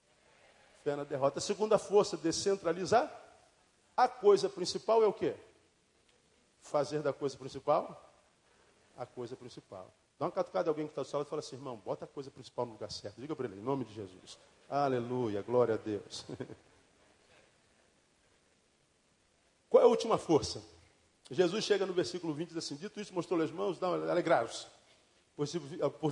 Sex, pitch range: male, 145-230 Hz